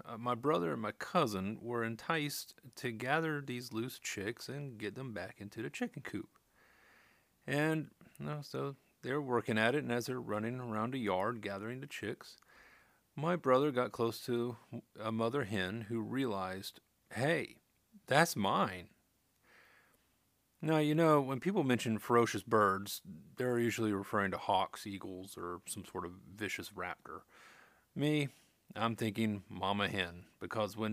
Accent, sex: American, male